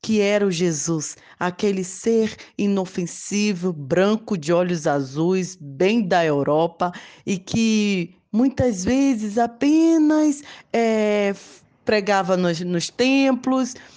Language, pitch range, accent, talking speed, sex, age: Portuguese, 175-230 Hz, Brazilian, 100 wpm, female, 20-39